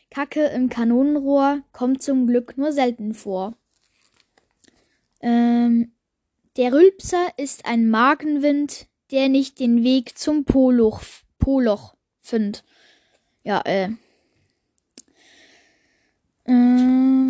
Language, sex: German, female